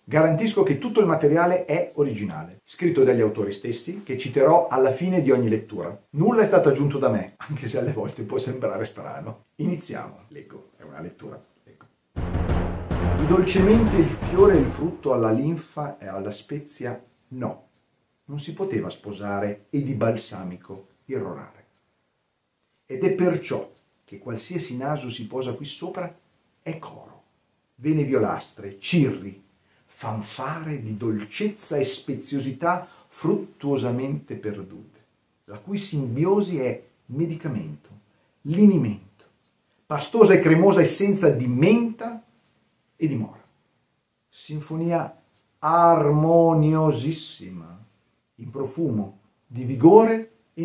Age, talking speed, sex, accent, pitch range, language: 40-59, 120 wpm, male, native, 110-170 Hz, Italian